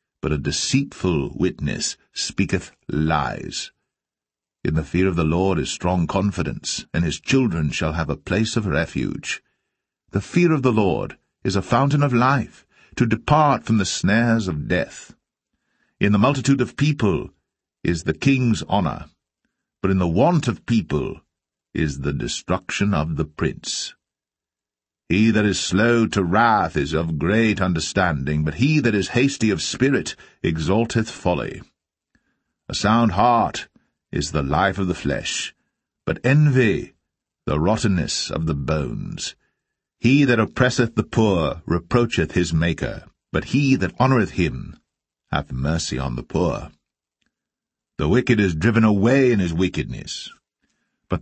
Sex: male